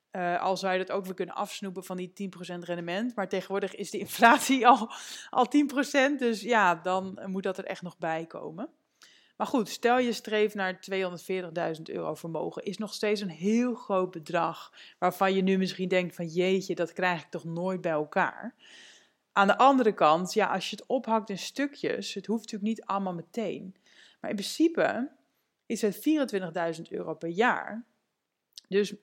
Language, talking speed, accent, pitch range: Dutch, 180 wpm, Dutch, 185-235 Hz